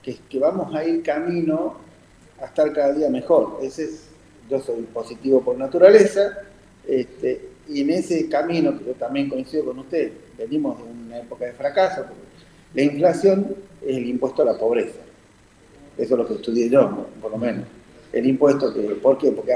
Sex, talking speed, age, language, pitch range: male, 175 wpm, 40-59, Spanish, 130-180 Hz